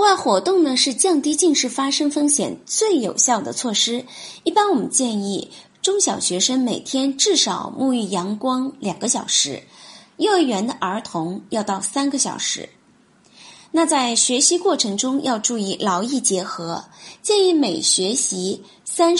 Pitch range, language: 205-295 Hz, Chinese